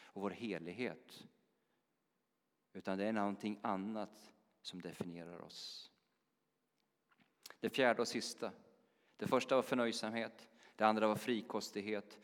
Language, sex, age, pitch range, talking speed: Swedish, male, 40-59, 95-115 Hz, 115 wpm